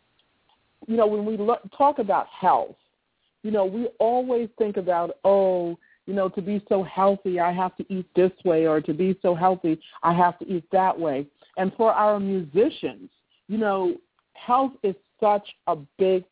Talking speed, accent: 175 wpm, American